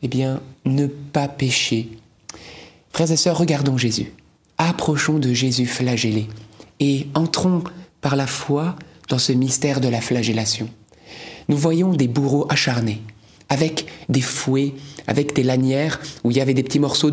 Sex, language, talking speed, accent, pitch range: male, French, 150 wpm, French, 130-160 Hz